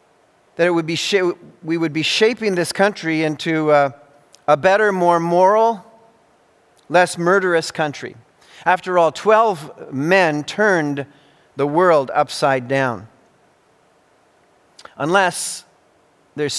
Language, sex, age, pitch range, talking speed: English, male, 40-59, 145-190 Hz, 110 wpm